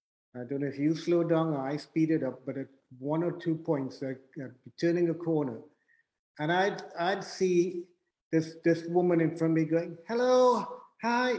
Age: 50-69